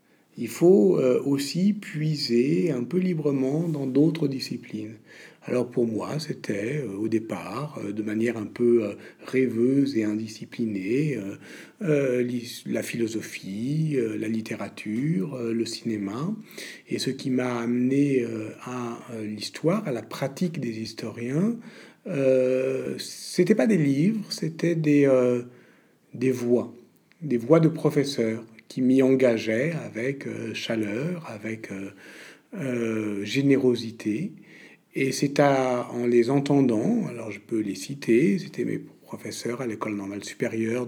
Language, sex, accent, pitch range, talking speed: French, male, French, 115-150 Hz, 120 wpm